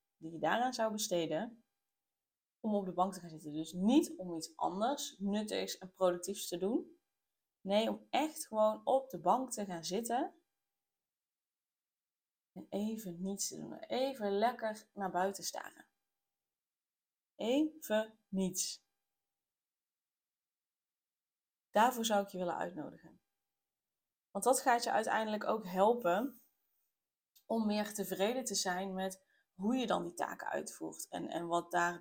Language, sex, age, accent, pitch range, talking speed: Dutch, female, 20-39, Dutch, 185-220 Hz, 135 wpm